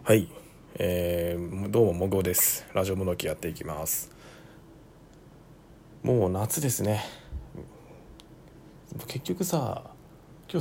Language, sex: Japanese, male